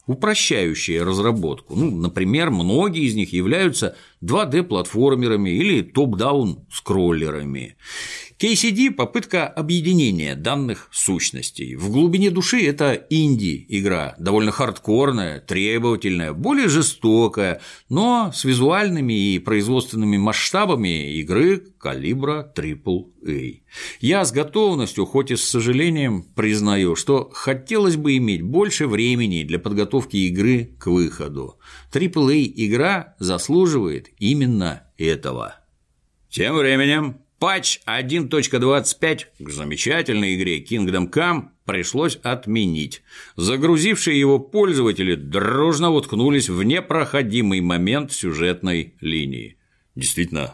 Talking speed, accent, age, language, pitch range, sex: 95 wpm, native, 60-79, Russian, 95-155 Hz, male